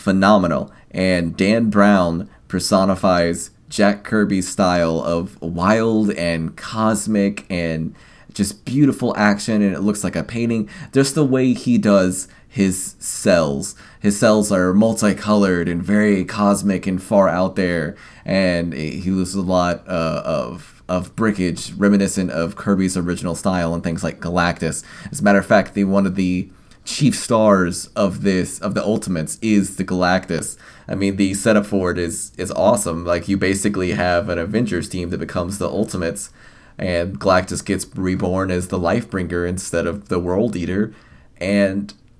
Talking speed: 160 wpm